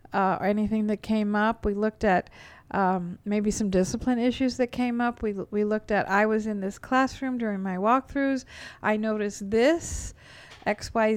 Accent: American